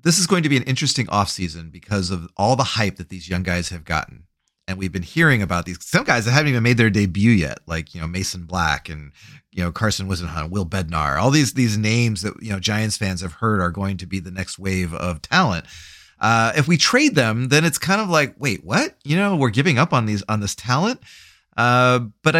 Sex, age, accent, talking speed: male, 30-49, American, 240 wpm